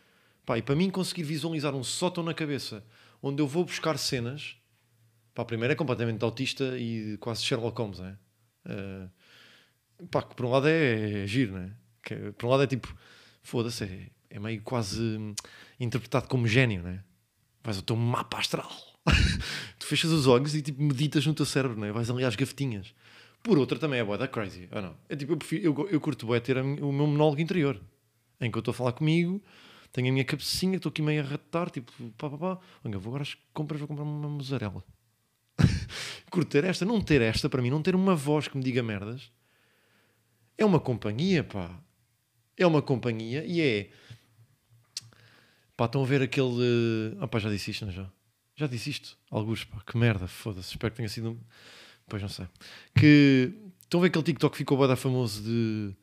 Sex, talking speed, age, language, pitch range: male, 200 wpm, 20-39, Portuguese, 110-145 Hz